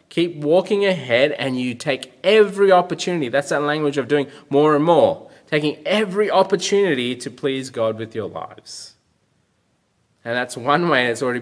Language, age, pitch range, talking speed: English, 20-39, 125-180 Hz, 165 wpm